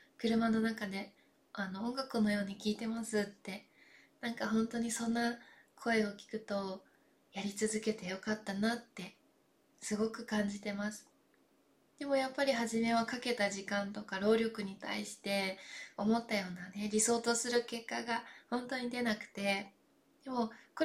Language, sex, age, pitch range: Japanese, female, 20-39, 200-240 Hz